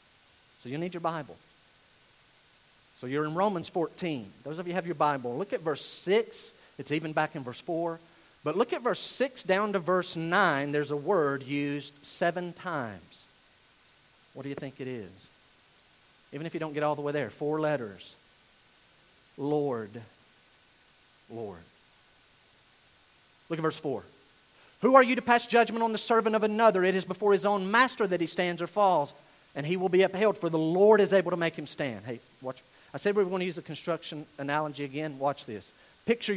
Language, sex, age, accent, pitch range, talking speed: English, male, 50-69, American, 150-195 Hz, 195 wpm